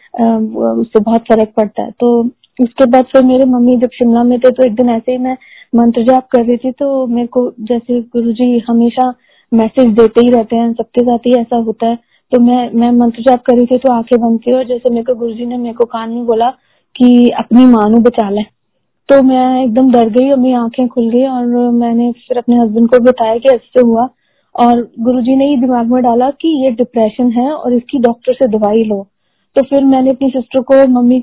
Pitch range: 235-255 Hz